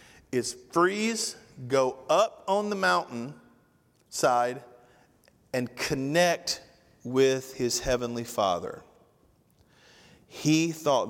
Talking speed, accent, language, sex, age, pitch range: 85 wpm, American, English, male, 40-59, 105-125 Hz